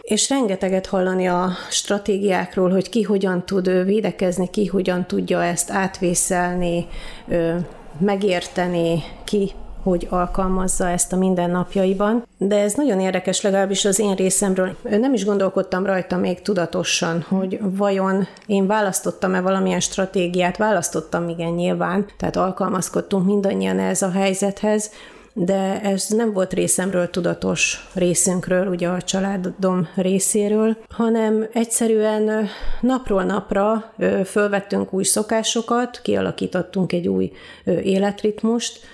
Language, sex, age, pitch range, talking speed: Hungarian, female, 30-49, 180-205 Hz, 115 wpm